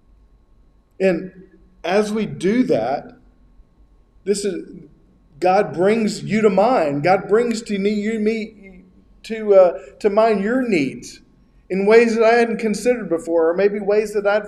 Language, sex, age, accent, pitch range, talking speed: English, male, 40-59, American, 160-215 Hz, 140 wpm